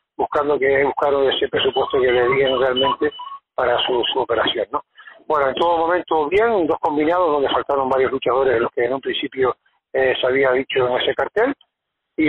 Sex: male